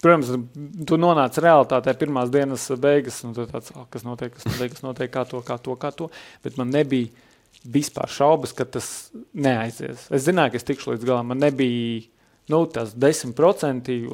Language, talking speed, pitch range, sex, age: English, 180 wpm, 120-140 Hz, male, 30-49